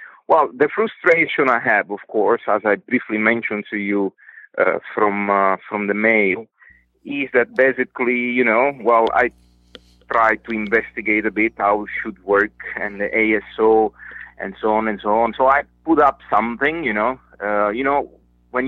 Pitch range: 105-125 Hz